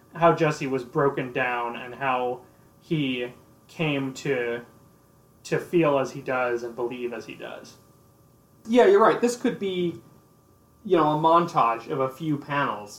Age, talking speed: 20-39, 155 wpm